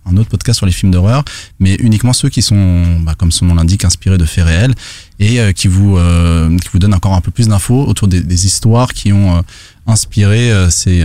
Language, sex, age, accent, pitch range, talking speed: French, male, 20-39, French, 90-110 Hz, 240 wpm